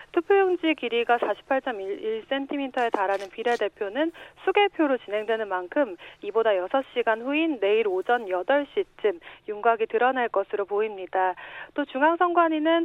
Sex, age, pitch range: female, 40-59, 210-330 Hz